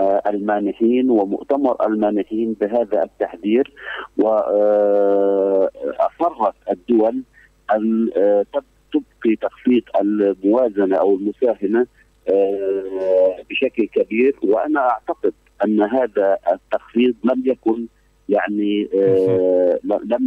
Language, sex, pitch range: Arabic, male, 100-125 Hz